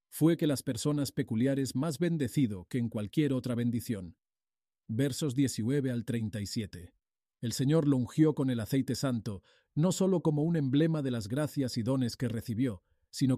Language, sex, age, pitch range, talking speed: Spanish, male, 40-59, 100-135 Hz, 165 wpm